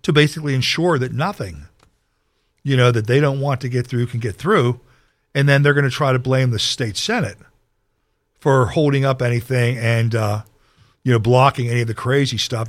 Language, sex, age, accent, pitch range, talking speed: English, male, 50-69, American, 115-150 Hz, 200 wpm